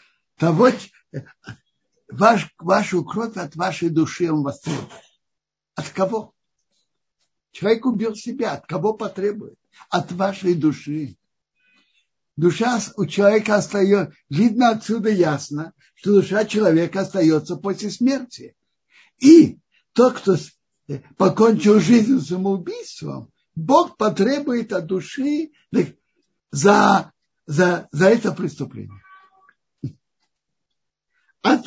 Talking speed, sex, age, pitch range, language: 95 wpm, male, 60-79, 180-245 Hz, Russian